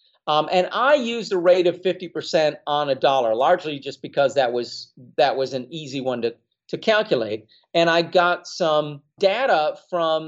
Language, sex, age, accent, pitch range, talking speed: English, male, 40-59, American, 150-190 Hz, 175 wpm